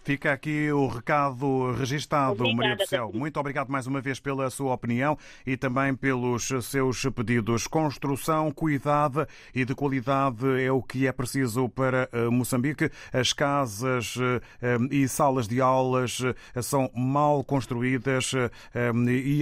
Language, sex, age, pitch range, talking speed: Portuguese, male, 30-49, 115-130 Hz, 135 wpm